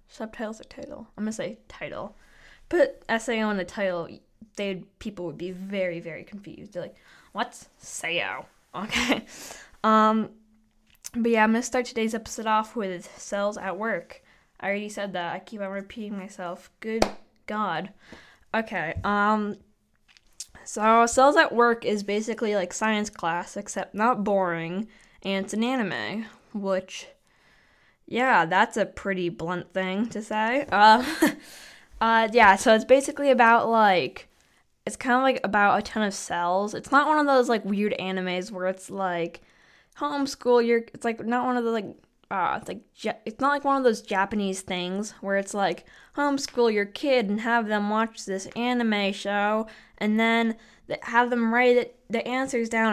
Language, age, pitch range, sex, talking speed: English, 10-29, 195-235 Hz, female, 165 wpm